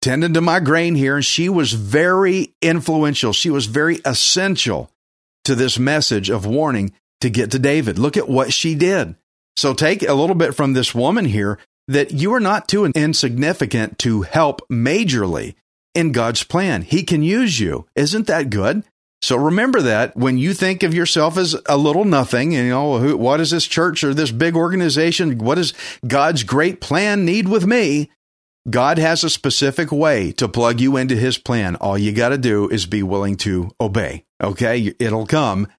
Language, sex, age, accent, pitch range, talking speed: English, male, 50-69, American, 115-165 Hz, 185 wpm